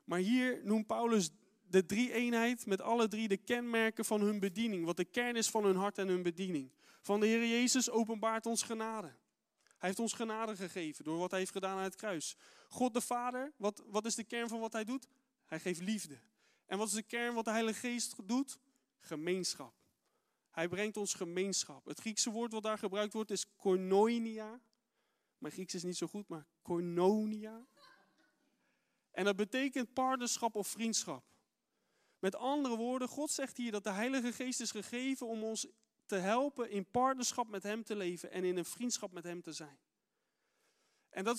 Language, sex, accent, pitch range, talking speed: Dutch, male, Dutch, 195-235 Hz, 190 wpm